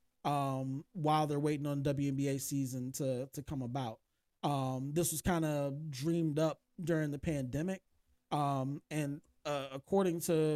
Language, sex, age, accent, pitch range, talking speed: English, male, 20-39, American, 135-160 Hz, 150 wpm